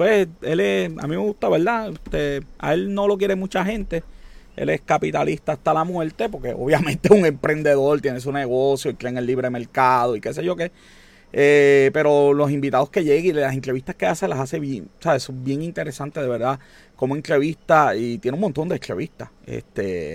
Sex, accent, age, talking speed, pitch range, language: male, Venezuelan, 30-49, 210 wpm, 130-175 Hz, Spanish